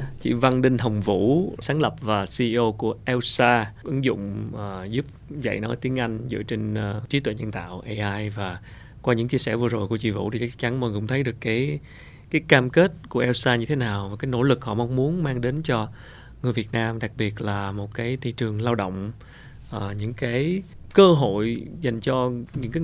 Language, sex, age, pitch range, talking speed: Vietnamese, male, 20-39, 110-135 Hz, 225 wpm